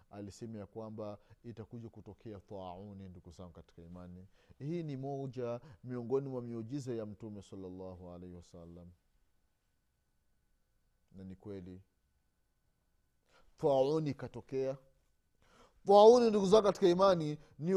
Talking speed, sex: 105 wpm, male